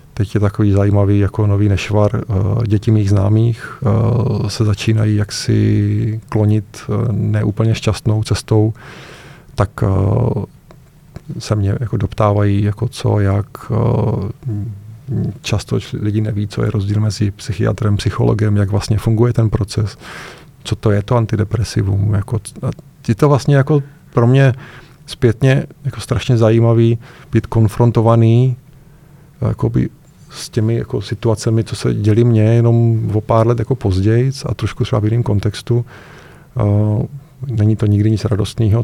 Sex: male